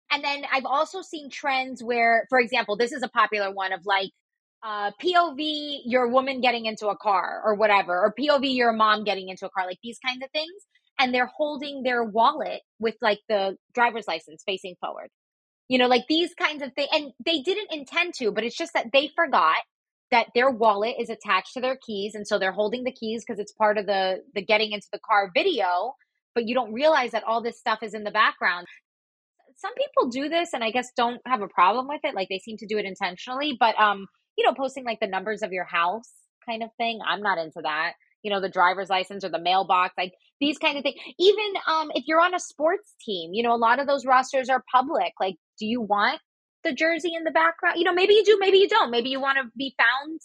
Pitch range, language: 205-290 Hz, English